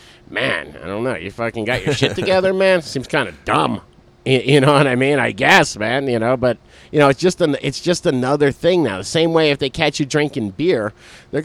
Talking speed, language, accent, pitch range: 245 wpm, English, American, 100-150 Hz